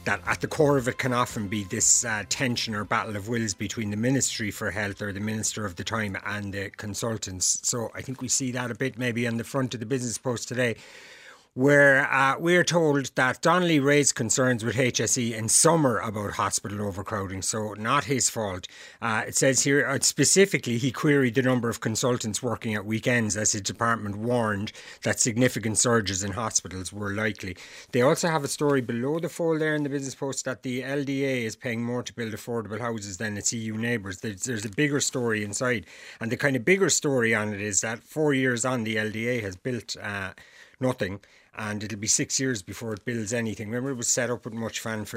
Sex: male